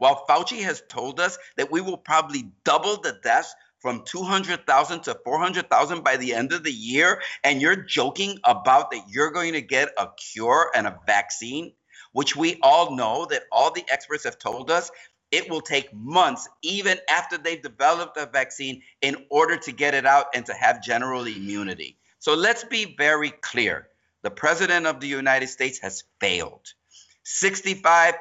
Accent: American